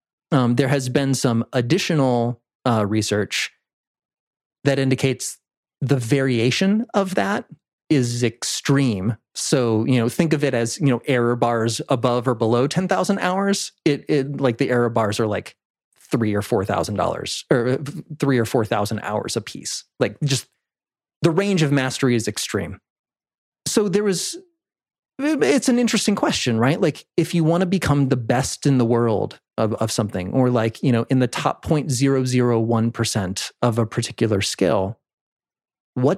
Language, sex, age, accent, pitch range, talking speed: English, male, 30-49, American, 115-155 Hz, 155 wpm